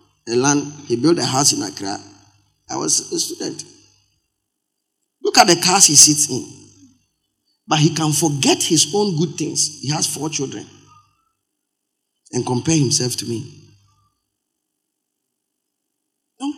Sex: male